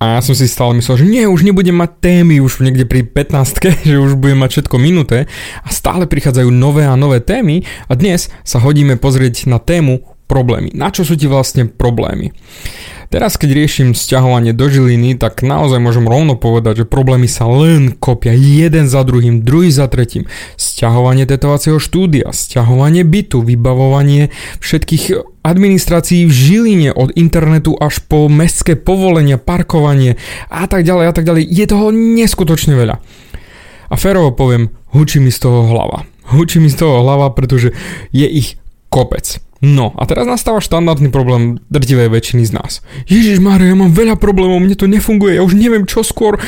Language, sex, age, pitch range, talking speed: Slovak, male, 20-39, 125-175 Hz, 170 wpm